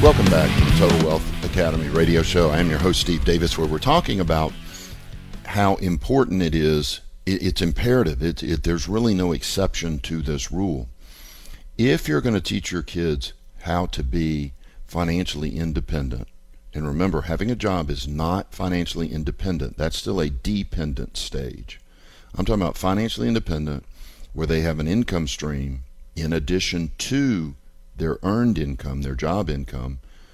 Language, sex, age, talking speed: English, male, 50-69, 160 wpm